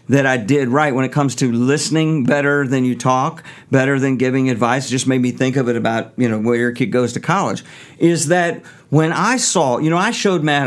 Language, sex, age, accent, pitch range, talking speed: English, male, 50-69, American, 130-160 Hz, 240 wpm